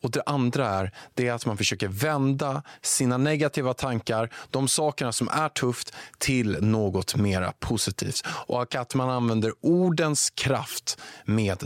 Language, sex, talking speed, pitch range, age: Swedish, male, 145 wpm, 110-170 Hz, 20-39